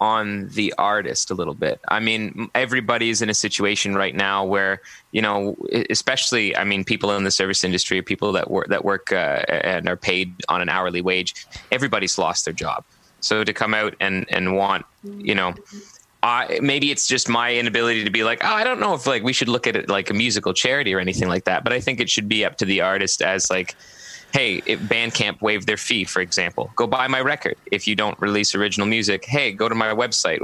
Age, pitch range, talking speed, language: 20-39, 95-110 Hz, 225 wpm, English